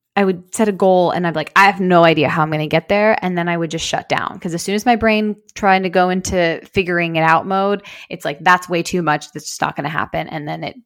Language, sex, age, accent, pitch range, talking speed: English, female, 20-39, American, 165-205 Hz, 305 wpm